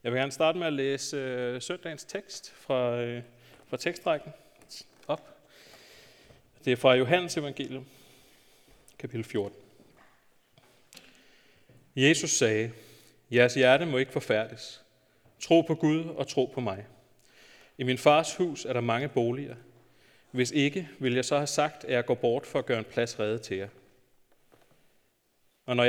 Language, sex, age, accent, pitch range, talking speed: Danish, male, 30-49, native, 115-135 Hz, 150 wpm